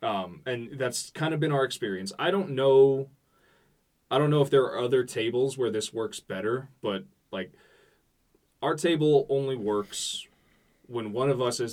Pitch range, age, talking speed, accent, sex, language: 100-135 Hz, 20-39, 175 wpm, American, male, English